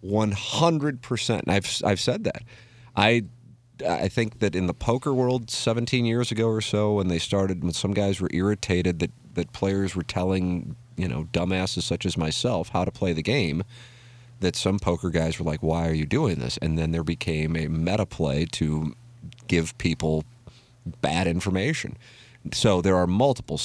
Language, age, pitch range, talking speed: English, 40-59, 80-115 Hz, 180 wpm